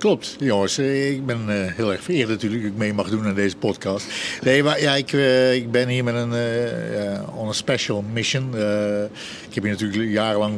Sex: male